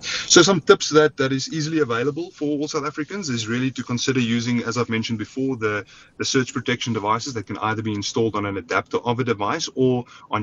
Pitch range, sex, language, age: 105-135 Hz, male, English, 30-49